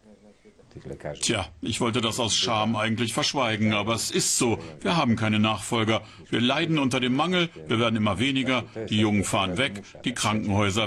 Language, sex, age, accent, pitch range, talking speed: German, male, 60-79, German, 105-135 Hz, 170 wpm